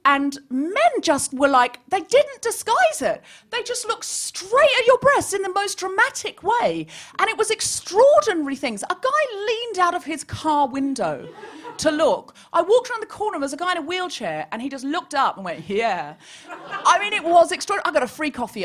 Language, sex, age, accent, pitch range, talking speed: English, female, 30-49, British, 255-365 Hz, 215 wpm